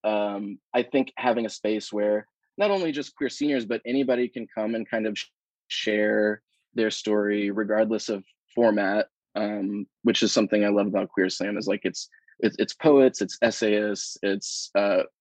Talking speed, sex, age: 170 wpm, male, 20-39